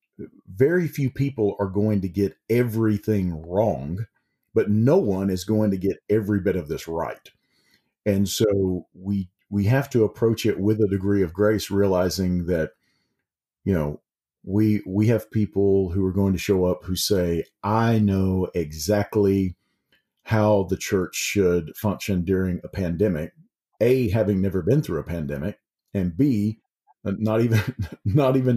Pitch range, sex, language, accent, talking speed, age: 100-120 Hz, male, English, American, 155 wpm, 50-69